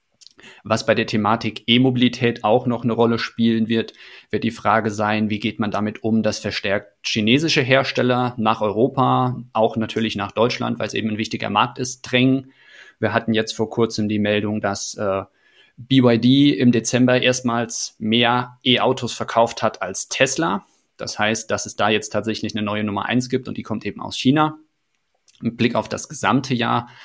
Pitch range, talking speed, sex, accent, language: 110-125 Hz, 180 wpm, male, German, German